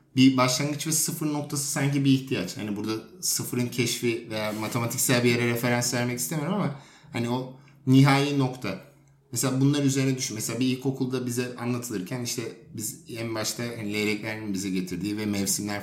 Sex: male